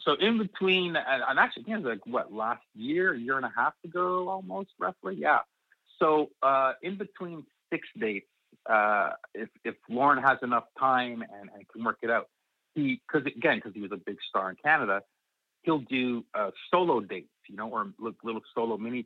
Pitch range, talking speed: 110-160 Hz, 195 wpm